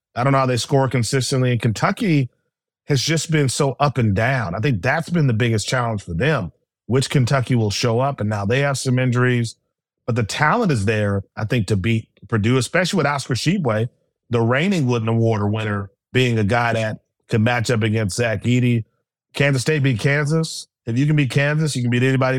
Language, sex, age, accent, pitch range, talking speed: English, male, 30-49, American, 115-140 Hz, 210 wpm